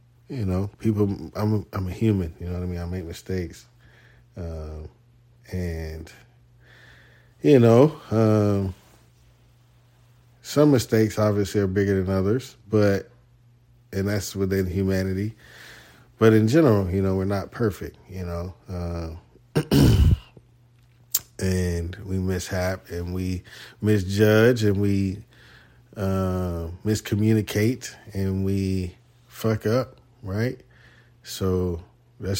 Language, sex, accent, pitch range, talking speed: English, male, American, 95-120 Hz, 115 wpm